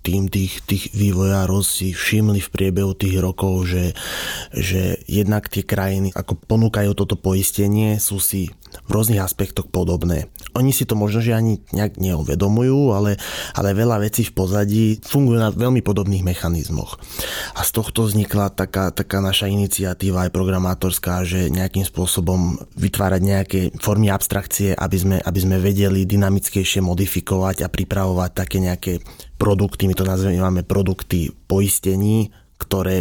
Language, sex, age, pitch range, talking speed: Slovak, male, 20-39, 95-100 Hz, 140 wpm